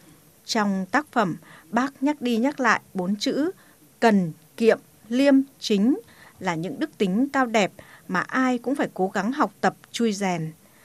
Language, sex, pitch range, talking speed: Vietnamese, female, 190-245 Hz, 165 wpm